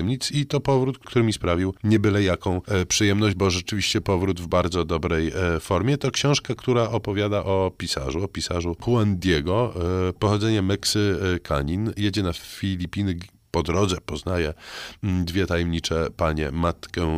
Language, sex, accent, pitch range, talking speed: Polish, male, native, 85-105 Hz, 145 wpm